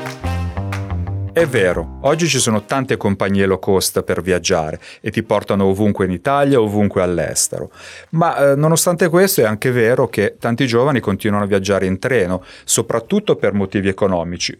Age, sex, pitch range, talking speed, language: 30-49, male, 100-140 Hz, 155 wpm, Italian